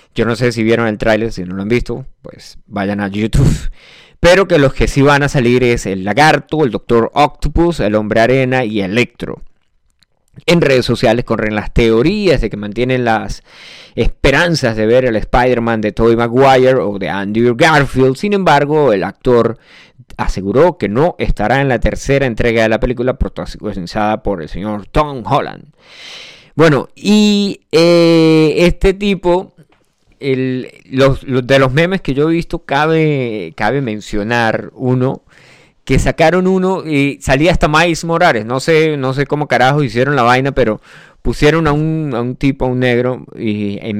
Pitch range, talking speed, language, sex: 115-150 Hz, 170 wpm, Spanish, male